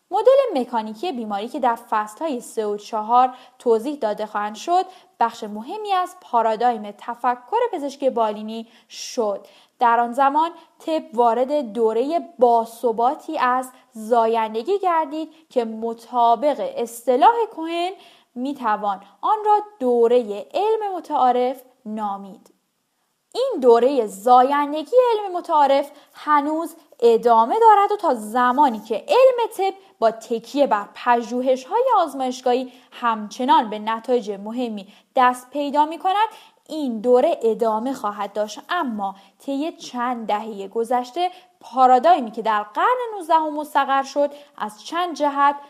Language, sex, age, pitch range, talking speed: Persian, female, 10-29, 230-320 Hz, 115 wpm